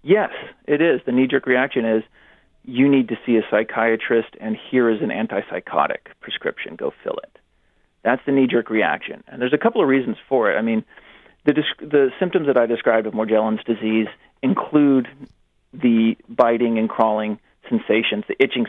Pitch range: 115-145 Hz